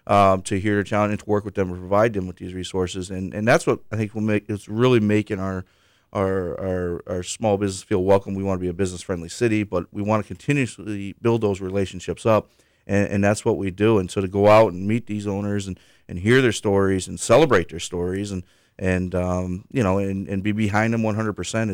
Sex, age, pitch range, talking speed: male, 30-49, 95-115 Hz, 245 wpm